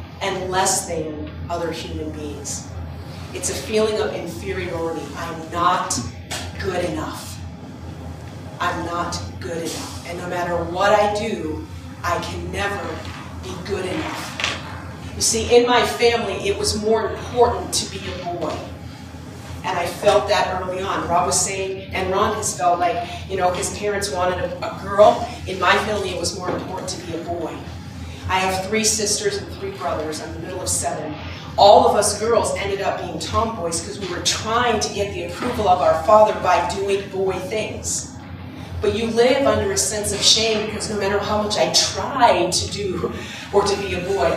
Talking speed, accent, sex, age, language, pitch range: 185 wpm, American, female, 40-59, English, 140-210 Hz